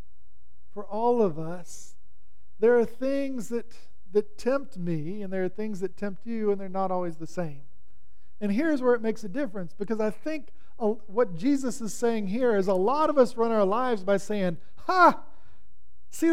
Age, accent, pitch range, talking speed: 40-59, American, 175-240 Hz, 190 wpm